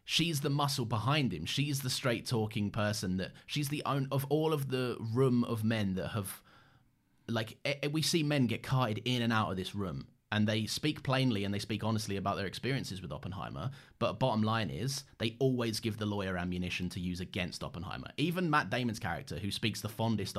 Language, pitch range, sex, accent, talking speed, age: English, 100-130 Hz, male, British, 205 wpm, 30-49